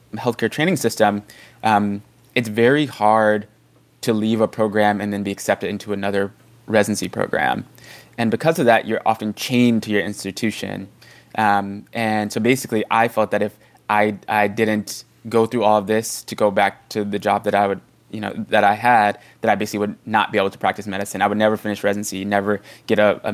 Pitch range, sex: 100-115 Hz, male